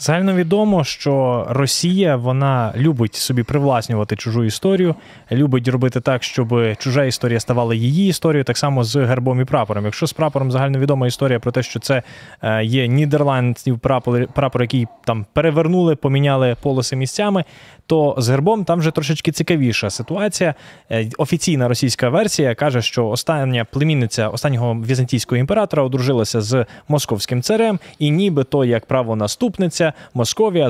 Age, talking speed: 20-39, 135 wpm